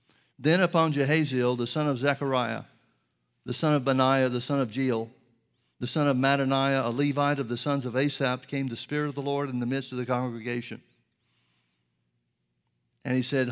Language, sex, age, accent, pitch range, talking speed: English, male, 60-79, American, 125-145 Hz, 180 wpm